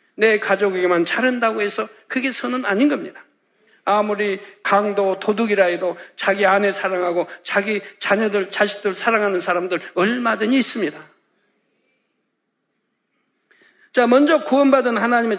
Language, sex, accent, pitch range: Korean, male, native, 200-235 Hz